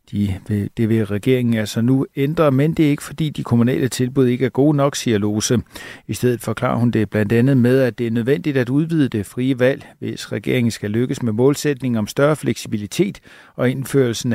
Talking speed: 200 wpm